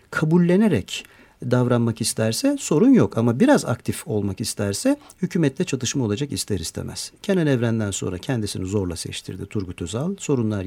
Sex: male